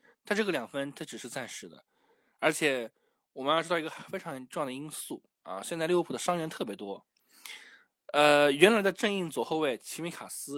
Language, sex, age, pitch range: Chinese, male, 20-39, 140-210 Hz